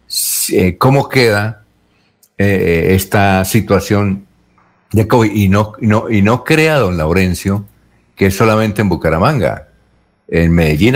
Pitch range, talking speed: 85-110 Hz, 125 wpm